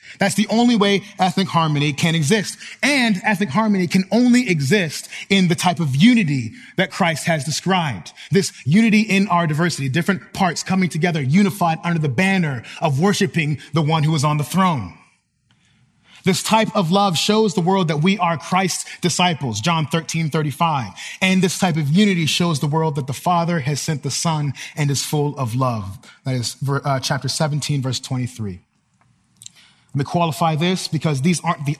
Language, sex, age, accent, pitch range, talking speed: English, male, 30-49, American, 145-185 Hz, 175 wpm